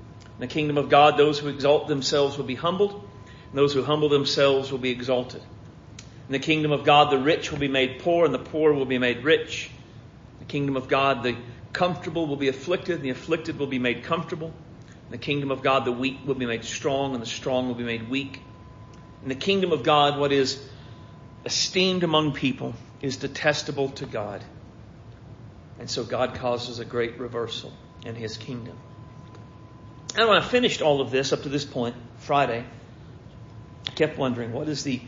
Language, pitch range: English, 120-145 Hz